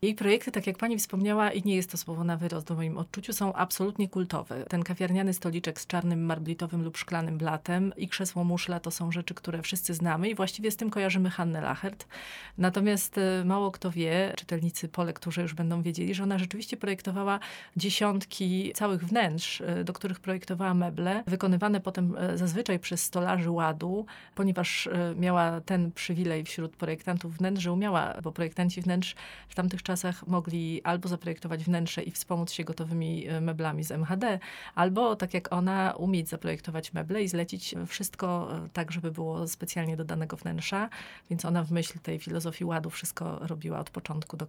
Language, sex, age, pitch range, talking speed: Polish, female, 30-49, 165-190 Hz, 170 wpm